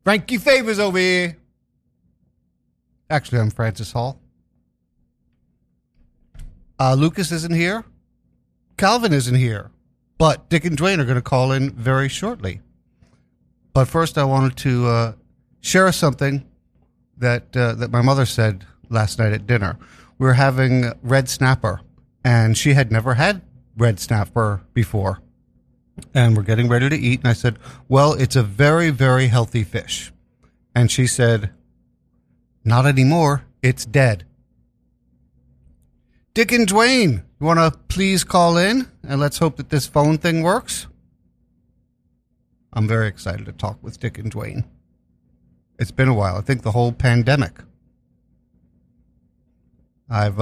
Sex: male